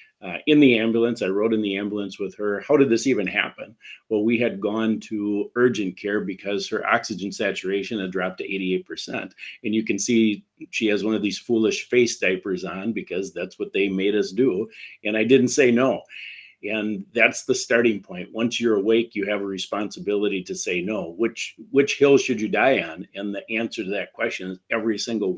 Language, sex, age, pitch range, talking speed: English, male, 50-69, 100-115 Hz, 205 wpm